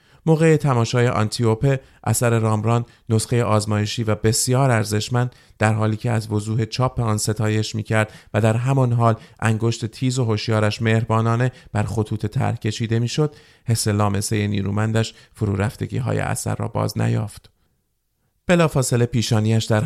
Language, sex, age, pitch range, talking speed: Persian, male, 30-49, 105-125 Hz, 135 wpm